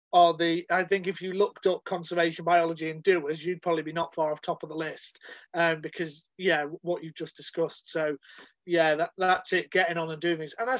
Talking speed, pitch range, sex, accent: 220 wpm, 165-195 Hz, male, British